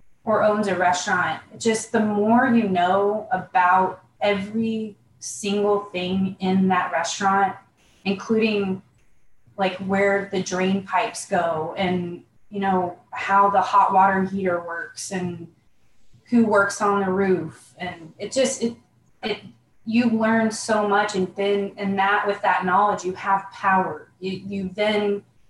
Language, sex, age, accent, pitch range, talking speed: English, female, 20-39, American, 185-220 Hz, 140 wpm